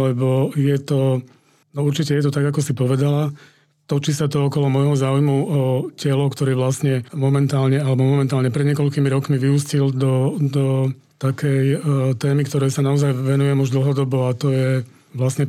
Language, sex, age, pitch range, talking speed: Slovak, male, 40-59, 130-145 Hz, 165 wpm